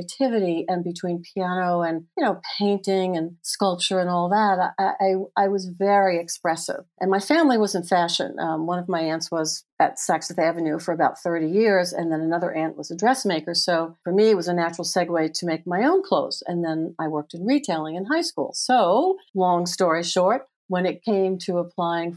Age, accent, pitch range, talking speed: 50-69, American, 165-190 Hz, 205 wpm